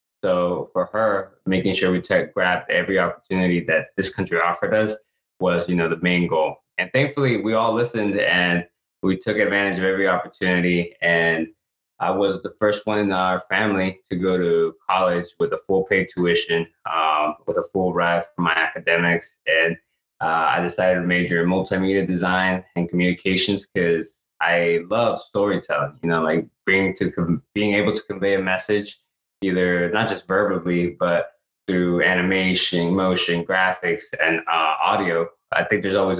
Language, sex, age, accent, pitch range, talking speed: English, male, 20-39, American, 85-100 Hz, 170 wpm